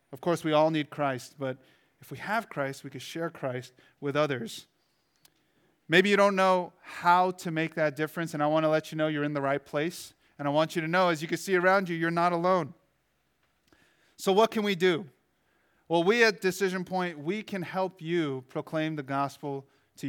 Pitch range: 140-170 Hz